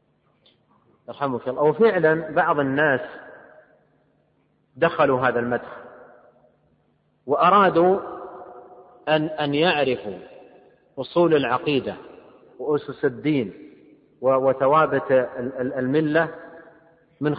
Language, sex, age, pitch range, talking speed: Arabic, male, 40-59, 130-160 Hz, 60 wpm